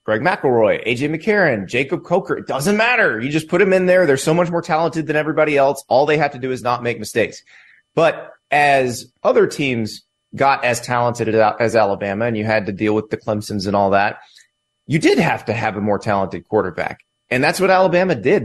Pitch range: 120-165 Hz